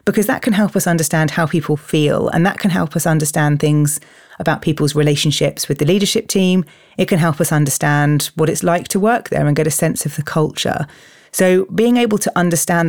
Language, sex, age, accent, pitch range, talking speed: English, female, 30-49, British, 150-180 Hz, 215 wpm